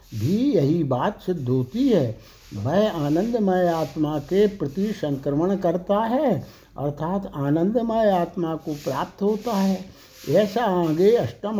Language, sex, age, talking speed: Hindi, male, 60-79, 125 wpm